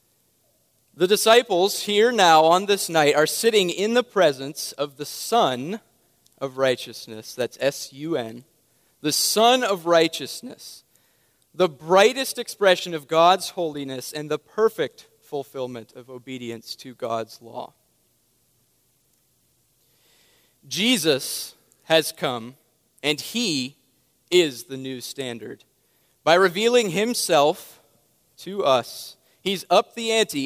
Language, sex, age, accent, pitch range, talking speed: English, male, 30-49, American, 135-180 Hz, 110 wpm